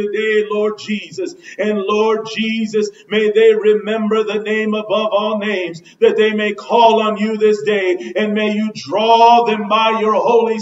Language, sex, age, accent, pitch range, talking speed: English, male, 40-59, American, 170-215 Hz, 170 wpm